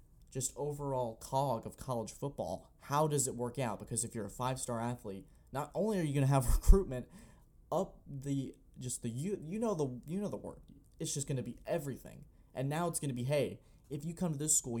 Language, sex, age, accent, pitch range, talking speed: English, male, 20-39, American, 115-145 Hz, 220 wpm